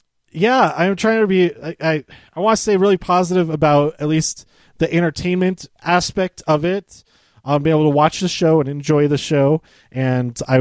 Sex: male